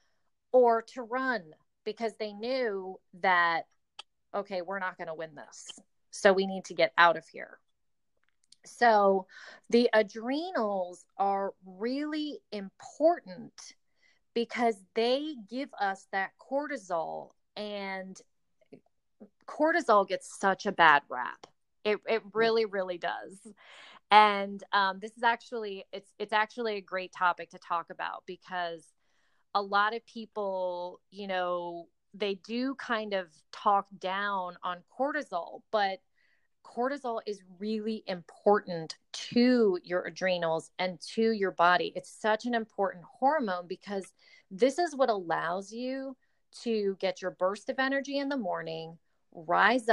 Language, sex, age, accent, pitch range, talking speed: English, female, 30-49, American, 185-235 Hz, 130 wpm